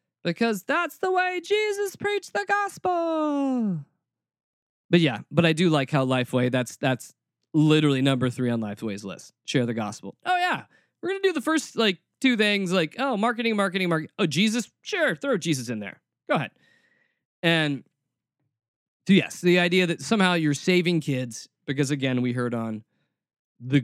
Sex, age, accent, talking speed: male, 20-39, American, 170 wpm